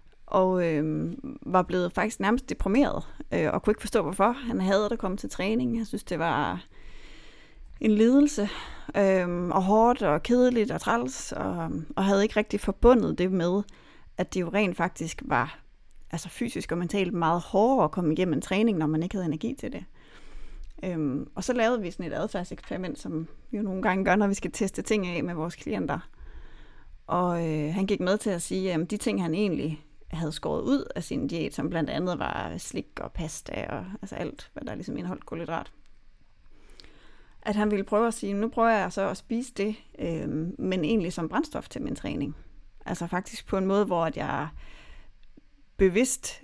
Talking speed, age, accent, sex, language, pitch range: 195 wpm, 30-49, native, female, Danish, 165-215 Hz